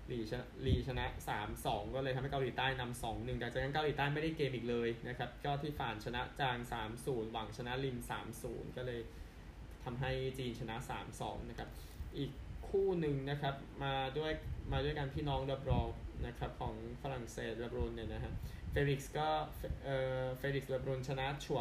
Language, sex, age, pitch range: Thai, male, 10-29, 115-135 Hz